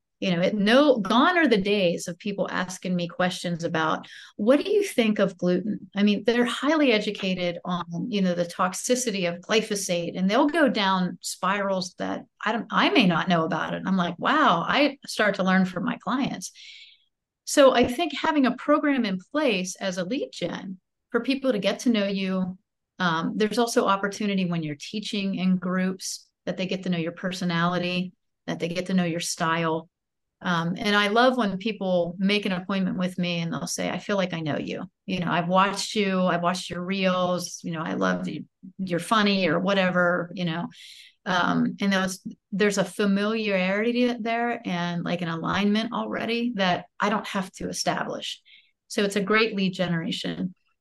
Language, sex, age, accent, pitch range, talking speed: English, female, 30-49, American, 180-225 Hz, 190 wpm